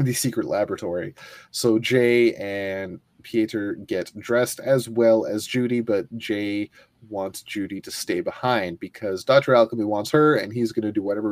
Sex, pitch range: male, 100-120 Hz